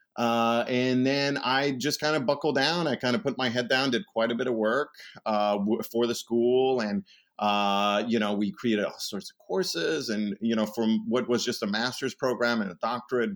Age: 30-49